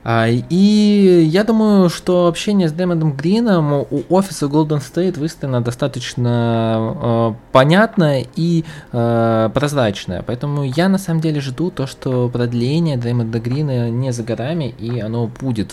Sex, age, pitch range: male, 20-39, 100-145 Hz